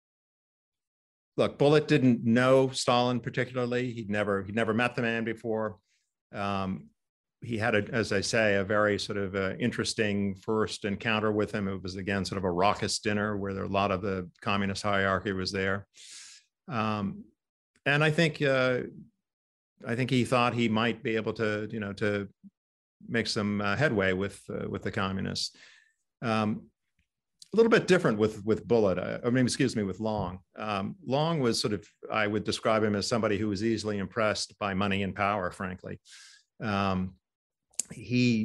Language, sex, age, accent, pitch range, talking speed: English, male, 50-69, American, 100-115 Hz, 175 wpm